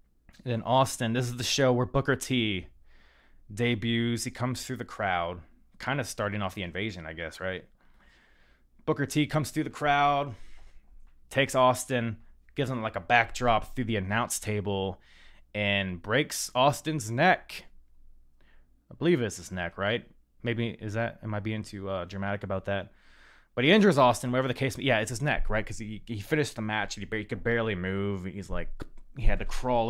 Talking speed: 185 wpm